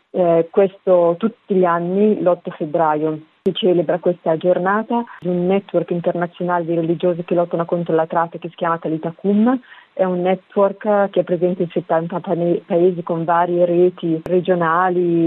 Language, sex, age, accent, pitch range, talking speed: Italian, female, 30-49, native, 170-190 Hz, 155 wpm